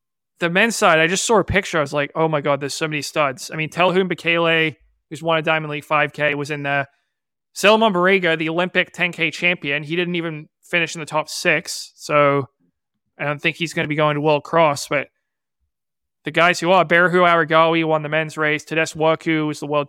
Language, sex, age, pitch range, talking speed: English, male, 20-39, 150-175 Hz, 220 wpm